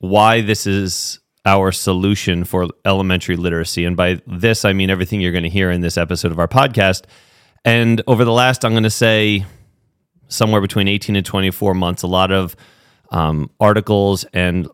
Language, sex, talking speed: English, male, 180 wpm